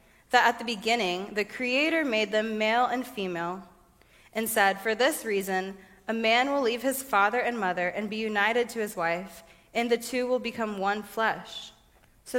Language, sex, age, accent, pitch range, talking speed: English, female, 20-39, American, 200-240 Hz, 185 wpm